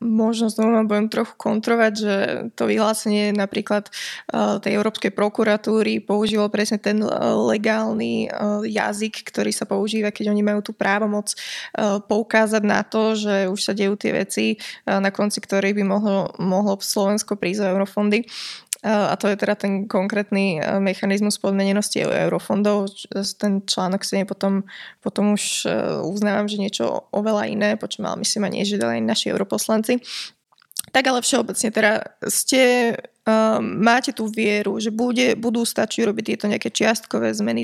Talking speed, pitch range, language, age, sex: 145 wpm, 200-220 Hz, Slovak, 20-39, female